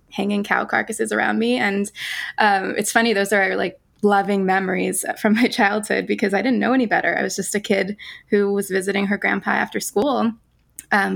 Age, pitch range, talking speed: 20-39, 195-220 Hz, 195 wpm